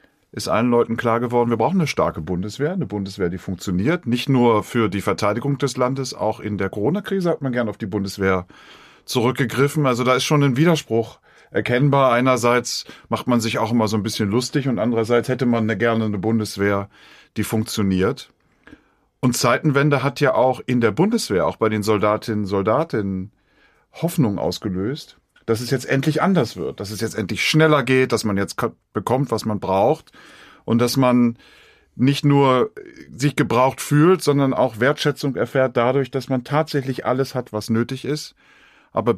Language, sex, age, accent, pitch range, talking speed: German, male, 40-59, German, 110-140 Hz, 180 wpm